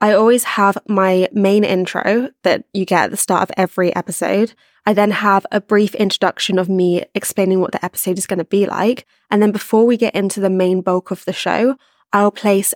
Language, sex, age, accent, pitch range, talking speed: English, female, 20-39, British, 185-210 Hz, 215 wpm